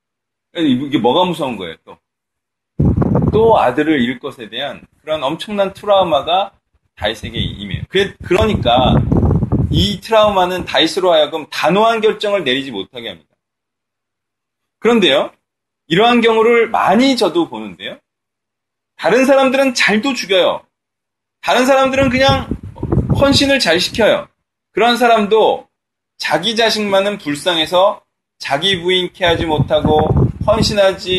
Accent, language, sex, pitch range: native, Korean, male, 155-225 Hz